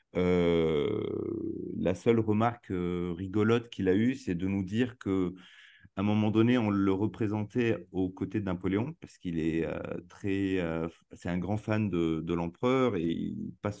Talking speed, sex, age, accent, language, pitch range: 170 wpm, male, 30-49, French, French, 90-110 Hz